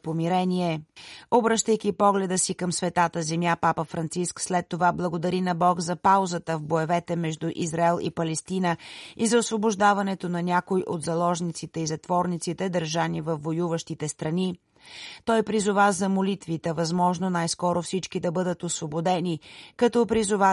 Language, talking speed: Bulgarian, 135 wpm